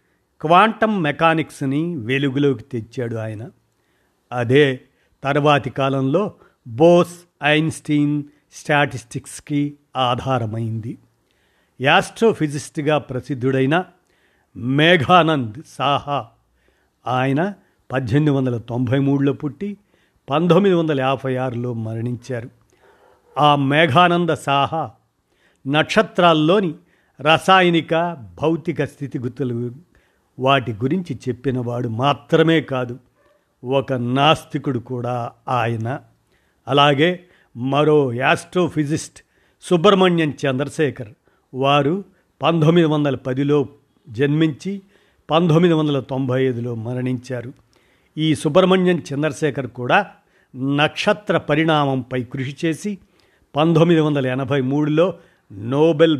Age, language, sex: 50-69, Telugu, male